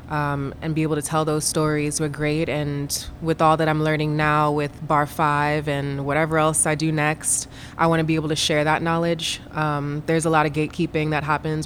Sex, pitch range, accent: female, 150-170 Hz, American